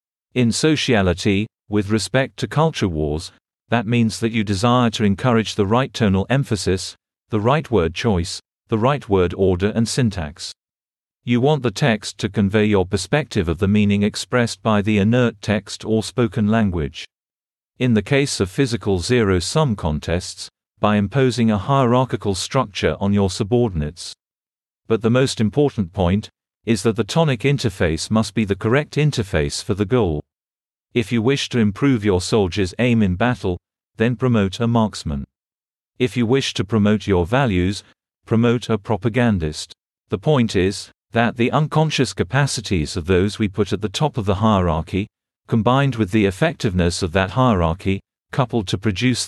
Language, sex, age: English, male, 50-69